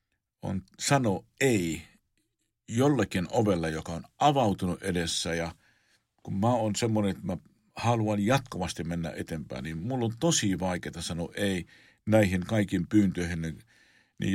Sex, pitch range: male, 85-105 Hz